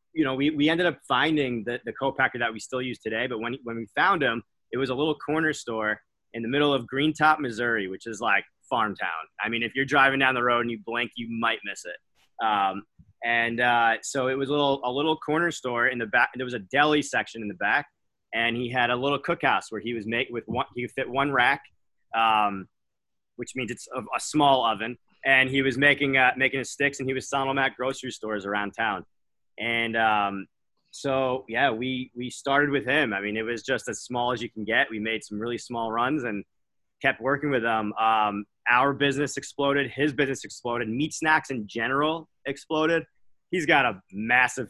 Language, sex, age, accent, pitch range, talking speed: English, male, 30-49, American, 110-140 Hz, 225 wpm